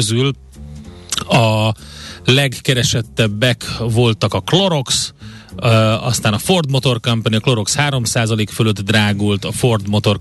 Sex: male